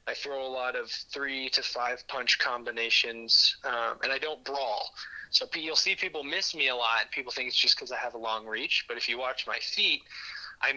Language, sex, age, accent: English, male, 20-39, American